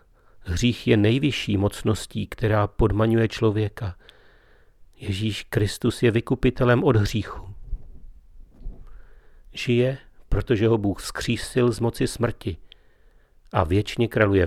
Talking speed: 100 wpm